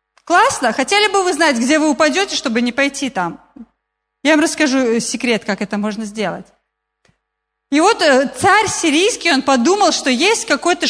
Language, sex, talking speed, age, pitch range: Russian, female, 160 wpm, 30-49, 265-350 Hz